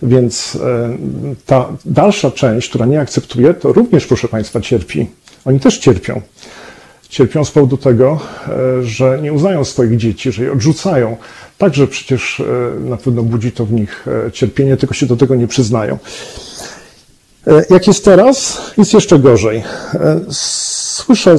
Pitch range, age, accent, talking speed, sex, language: 125-155 Hz, 40-59, native, 135 wpm, male, Polish